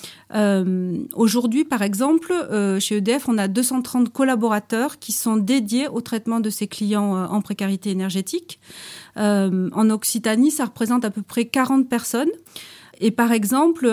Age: 40-59